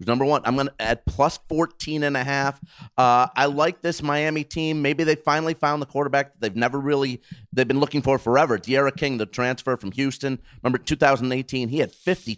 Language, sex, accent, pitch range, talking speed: English, male, American, 125-160 Hz, 205 wpm